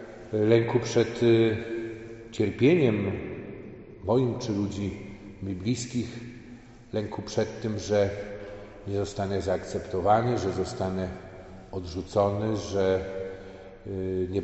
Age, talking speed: 40-59, 85 wpm